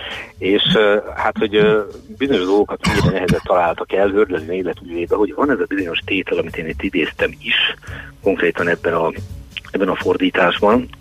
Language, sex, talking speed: Hungarian, male, 160 wpm